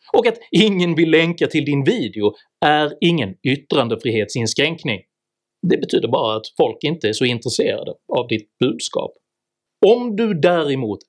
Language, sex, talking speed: Swedish, male, 140 wpm